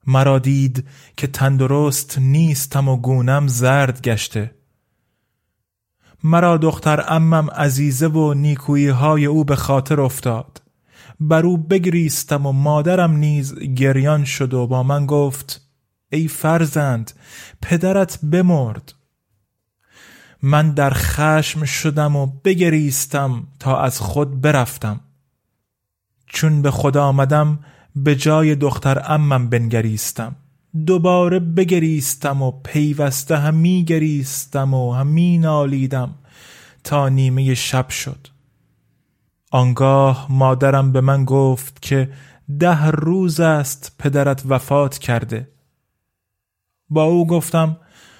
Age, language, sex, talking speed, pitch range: 30-49, Persian, male, 100 wpm, 130-160 Hz